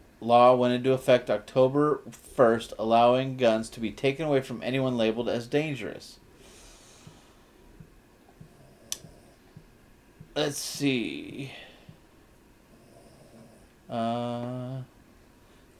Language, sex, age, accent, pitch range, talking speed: English, male, 30-49, American, 115-140 Hz, 75 wpm